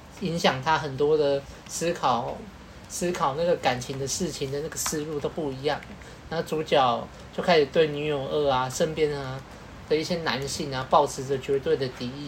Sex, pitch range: male, 140-190 Hz